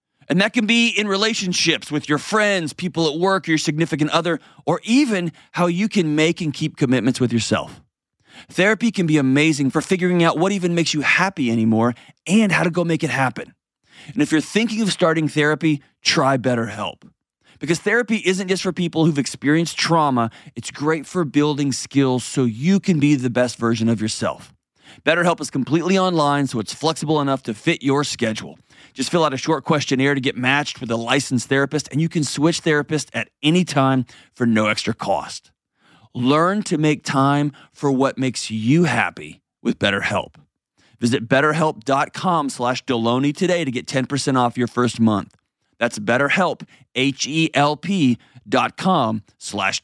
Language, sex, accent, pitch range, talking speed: English, male, American, 130-170 Hz, 170 wpm